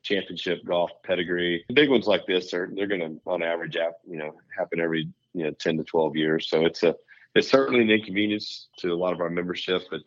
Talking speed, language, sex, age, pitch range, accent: 225 wpm, English, male, 40-59, 85-95 Hz, American